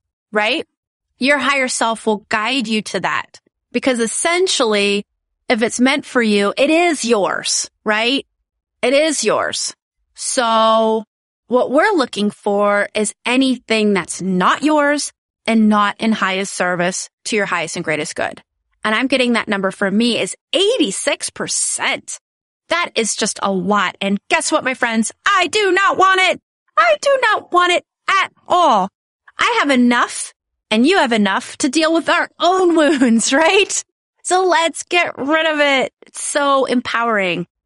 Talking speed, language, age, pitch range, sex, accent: 155 wpm, English, 30-49, 210-295 Hz, female, American